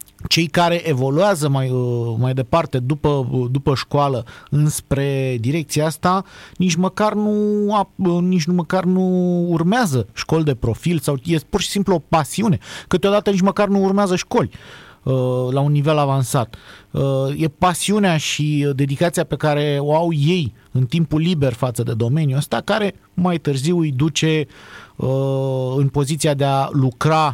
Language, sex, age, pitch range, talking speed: Romanian, male, 30-49, 130-160 Hz, 145 wpm